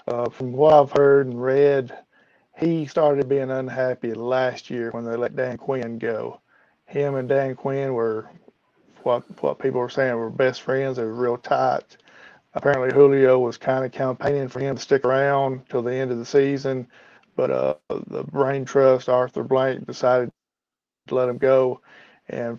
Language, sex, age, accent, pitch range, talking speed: English, male, 40-59, American, 125-135 Hz, 175 wpm